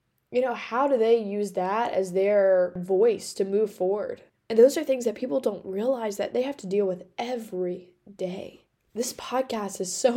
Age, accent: 10-29, American